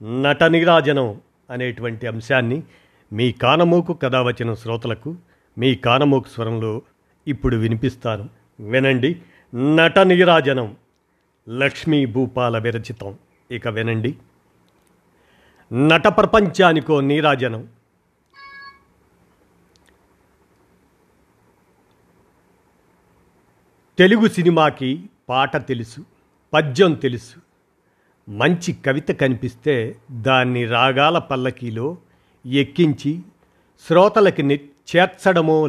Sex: male